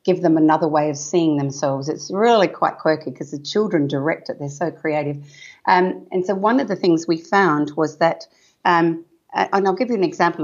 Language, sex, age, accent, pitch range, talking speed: English, female, 50-69, Australian, 155-180 Hz, 215 wpm